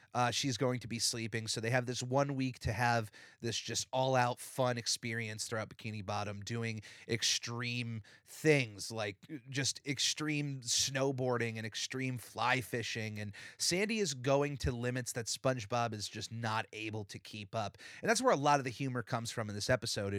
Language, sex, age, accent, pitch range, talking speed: English, male, 30-49, American, 115-140 Hz, 185 wpm